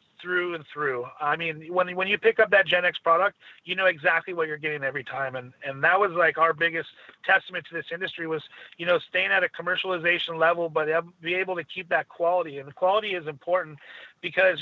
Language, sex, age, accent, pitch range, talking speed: English, male, 30-49, American, 160-180 Hz, 220 wpm